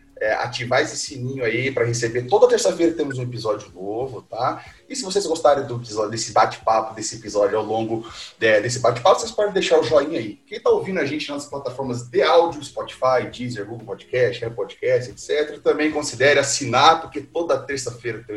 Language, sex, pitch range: Portuguese, male, 120-180 Hz